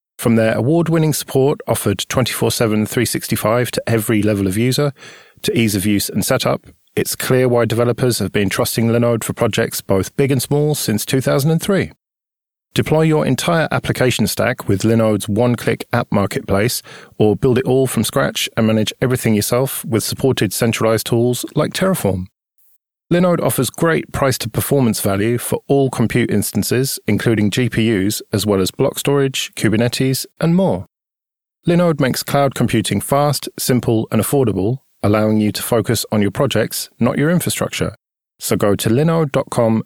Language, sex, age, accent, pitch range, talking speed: English, male, 40-59, British, 110-135 Hz, 155 wpm